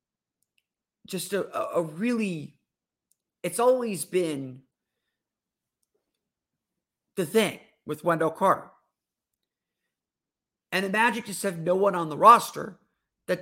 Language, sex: English, male